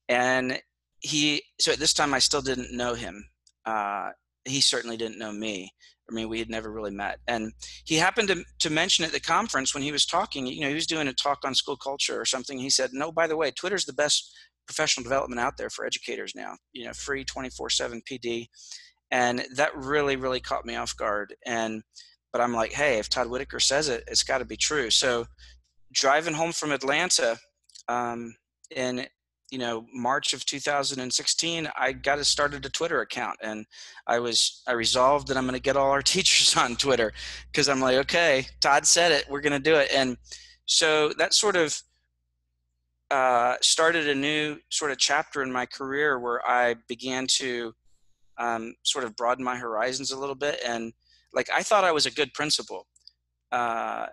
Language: English